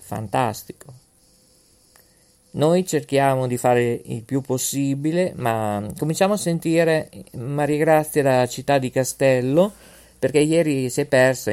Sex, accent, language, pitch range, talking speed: male, native, Italian, 120-170 Hz, 120 wpm